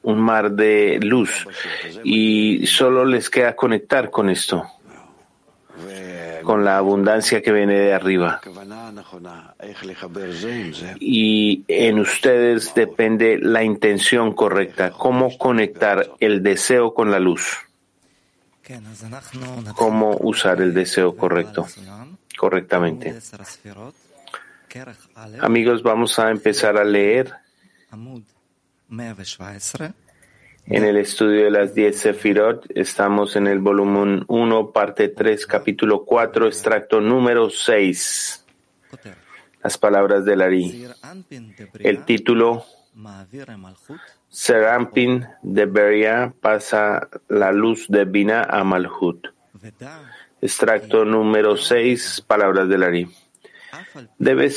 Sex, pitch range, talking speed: male, 100-115 Hz, 95 wpm